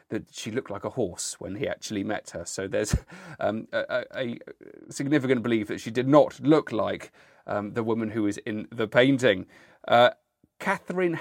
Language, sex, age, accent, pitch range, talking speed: English, male, 40-59, British, 105-150 Hz, 180 wpm